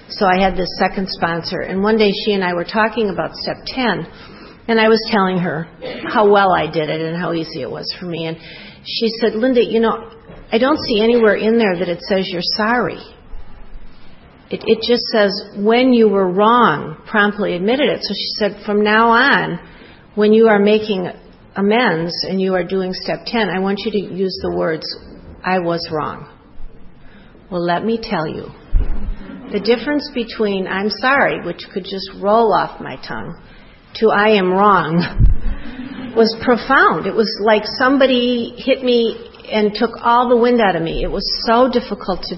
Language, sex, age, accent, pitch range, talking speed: English, female, 50-69, American, 175-225 Hz, 185 wpm